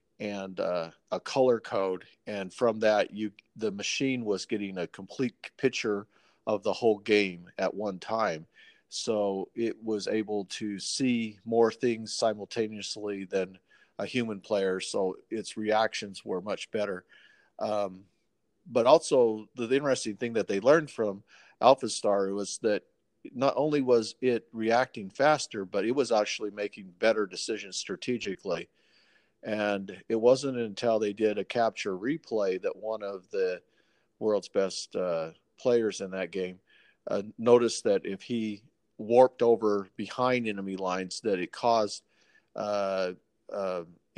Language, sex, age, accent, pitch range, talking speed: English, male, 40-59, American, 95-115 Hz, 140 wpm